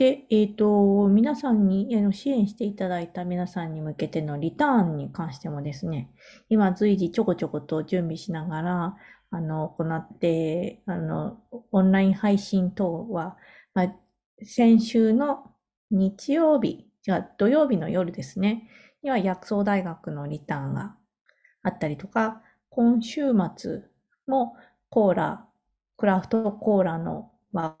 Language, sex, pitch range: Japanese, female, 175-225 Hz